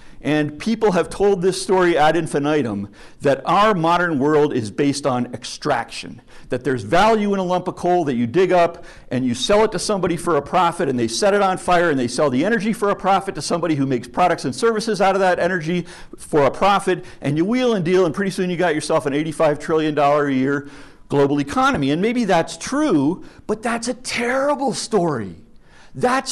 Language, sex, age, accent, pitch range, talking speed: English, male, 50-69, American, 155-225 Hz, 210 wpm